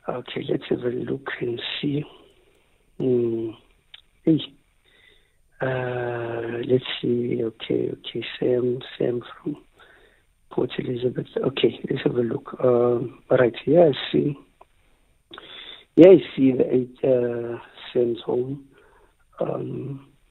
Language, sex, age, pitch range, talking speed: English, male, 60-79, 120-135 Hz, 115 wpm